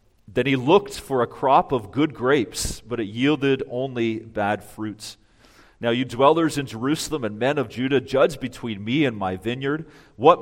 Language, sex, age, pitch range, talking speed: English, male, 40-59, 95-120 Hz, 180 wpm